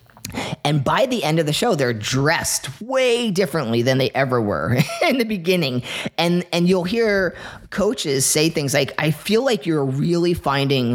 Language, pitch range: English, 130-175 Hz